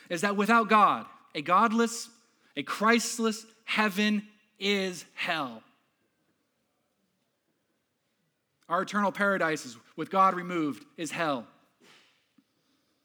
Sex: male